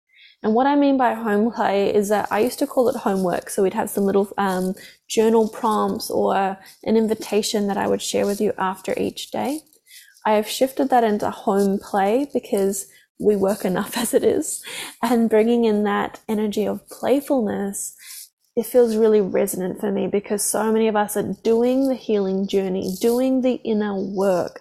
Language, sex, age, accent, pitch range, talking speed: English, female, 10-29, Australian, 195-235 Hz, 185 wpm